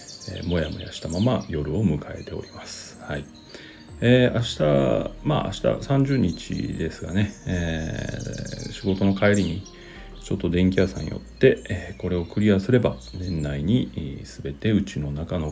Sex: male